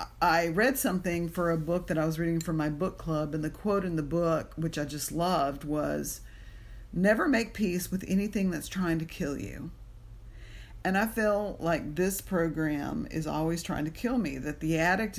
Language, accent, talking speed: English, American, 200 wpm